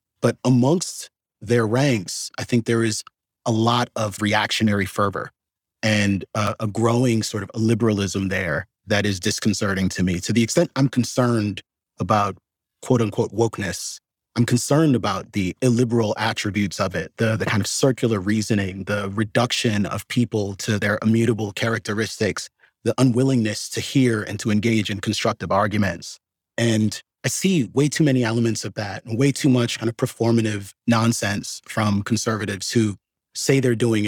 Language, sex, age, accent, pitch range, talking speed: English, male, 30-49, American, 105-120 Hz, 160 wpm